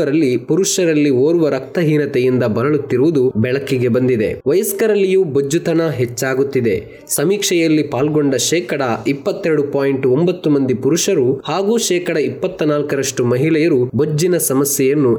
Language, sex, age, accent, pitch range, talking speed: Kannada, male, 20-39, native, 135-175 Hz, 90 wpm